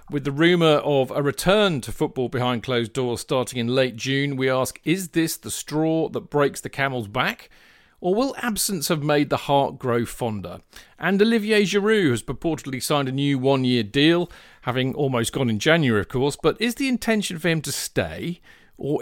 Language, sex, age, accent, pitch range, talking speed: English, male, 40-59, British, 125-165 Hz, 190 wpm